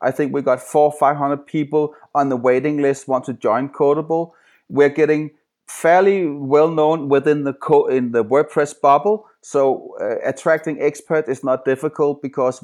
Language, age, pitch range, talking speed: English, 30-49, 130-155 Hz, 175 wpm